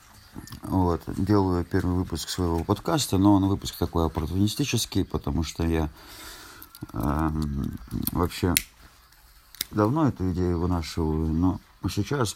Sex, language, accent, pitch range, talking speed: male, Russian, native, 80-100 Hz, 105 wpm